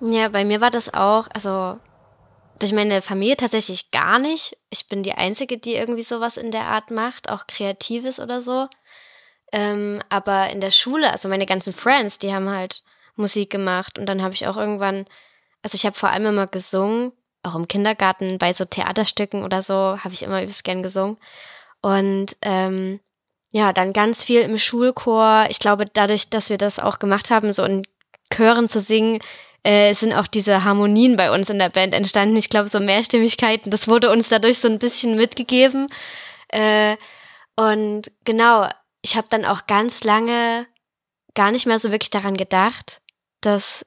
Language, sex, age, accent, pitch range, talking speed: German, female, 10-29, German, 195-230 Hz, 180 wpm